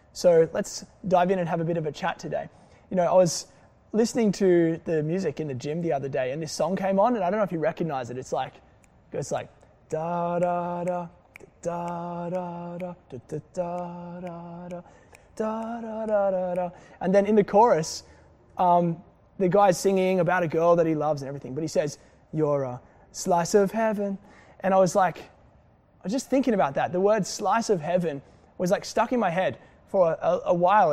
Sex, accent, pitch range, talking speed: male, Australian, 170-210 Hz, 205 wpm